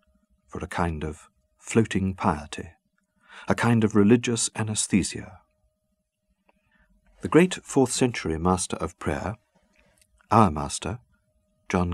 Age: 50-69